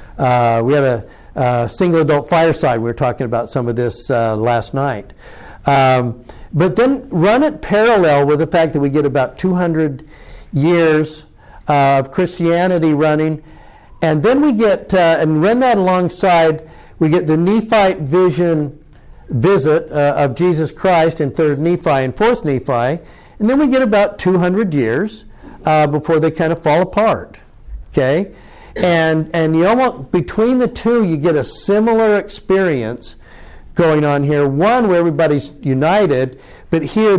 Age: 60-79